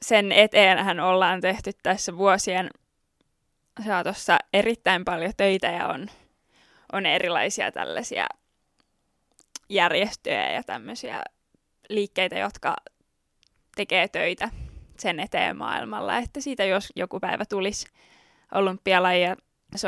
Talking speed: 105 wpm